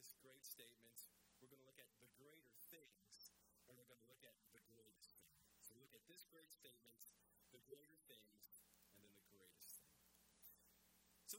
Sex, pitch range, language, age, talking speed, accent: male, 125-170 Hz, English, 40-59, 190 wpm, American